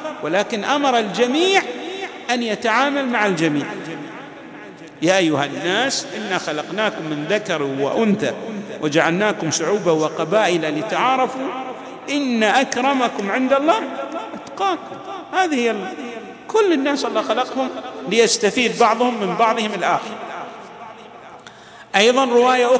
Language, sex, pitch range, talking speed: Arabic, male, 175-245 Hz, 95 wpm